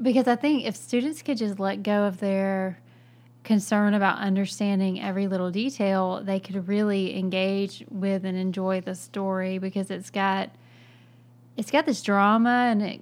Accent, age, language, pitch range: American, 20-39, English, 190-210 Hz